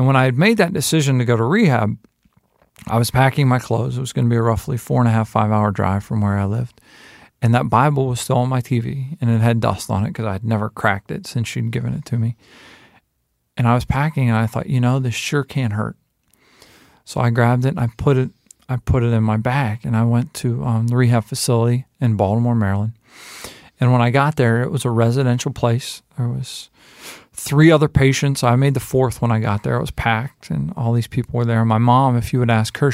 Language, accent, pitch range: English, American, 110-130 Hz